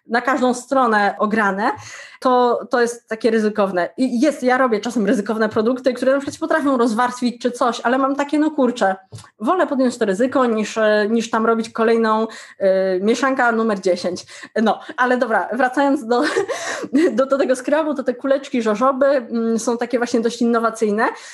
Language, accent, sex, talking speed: Polish, native, female, 165 wpm